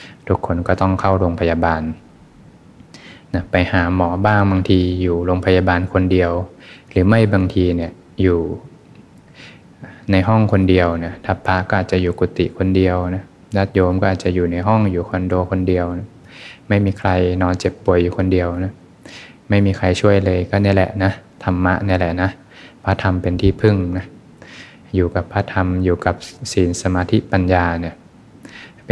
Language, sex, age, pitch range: Thai, male, 20-39, 90-100 Hz